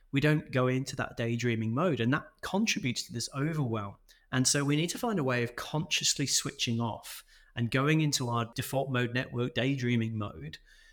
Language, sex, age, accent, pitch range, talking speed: English, male, 30-49, British, 120-150 Hz, 185 wpm